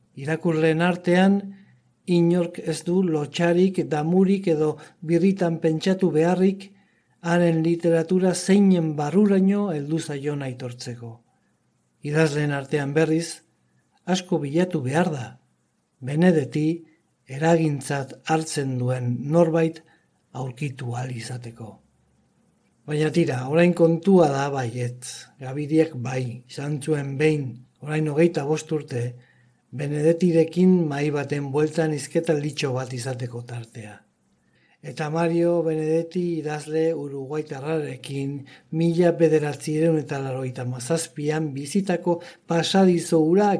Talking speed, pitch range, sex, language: 90 wpm, 130-170 Hz, male, Spanish